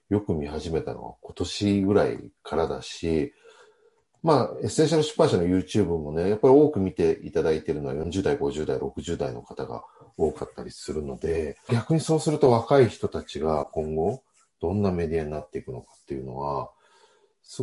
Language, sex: Japanese, male